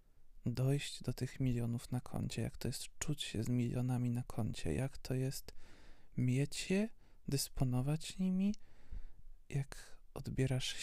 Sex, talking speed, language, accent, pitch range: male, 135 wpm, Polish, native, 105-140 Hz